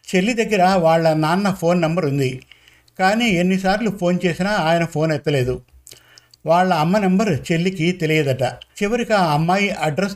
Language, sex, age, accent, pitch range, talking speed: Telugu, male, 50-69, native, 145-190 Hz, 135 wpm